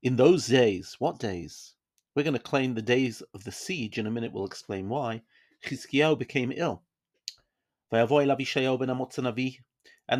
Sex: male